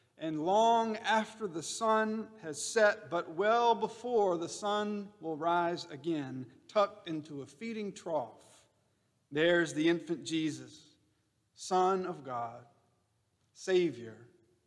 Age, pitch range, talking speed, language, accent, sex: 40-59, 120-190 Hz, 115 wpm, English, American, male